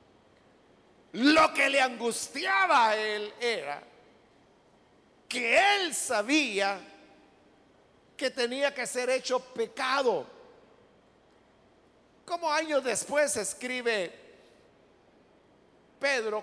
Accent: Mexican